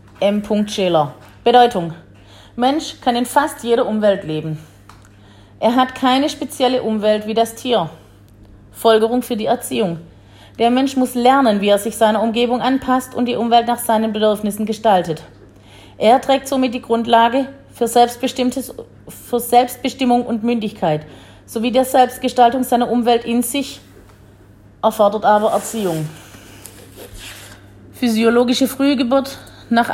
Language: German